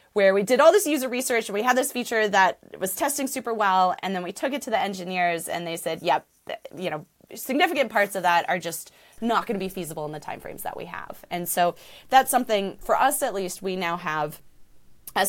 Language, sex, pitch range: English, female, 170-230 Hz